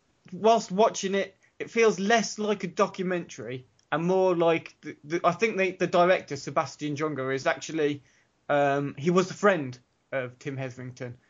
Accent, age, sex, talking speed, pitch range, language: British, 20-39, male, 155 wpm, 135-175 Hz, English